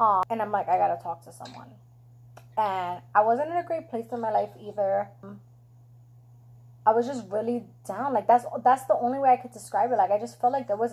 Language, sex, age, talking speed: English, female, 20-39, 230 wpm